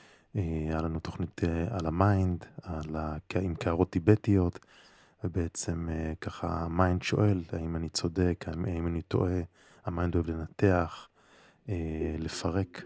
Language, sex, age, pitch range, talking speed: Hebrew, male, 20-39, 85-100 Hz, 110 wpm